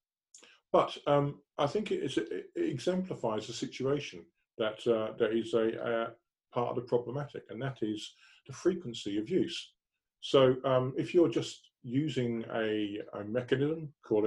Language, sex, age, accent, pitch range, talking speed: English, male, 40-59, British, 115-145 Hz, 150 wpm